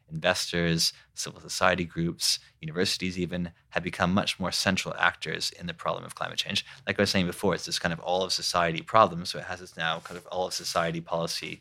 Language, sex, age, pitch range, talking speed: English, male, 30-49, 85-105 Hz, 205 wpm